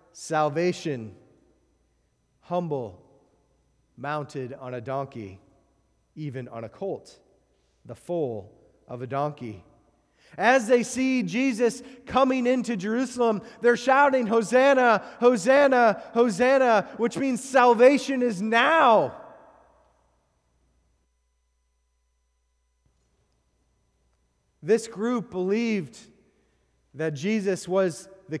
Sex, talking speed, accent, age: male, 80 wpm, American, 30-49